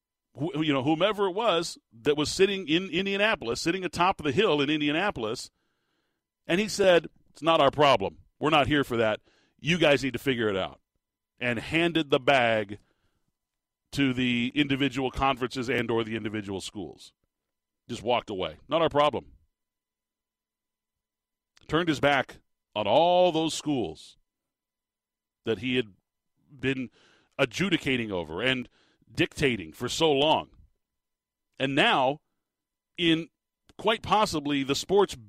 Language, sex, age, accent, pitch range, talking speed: English, male, 40-59, American, 130-175 Hz, 135 wpm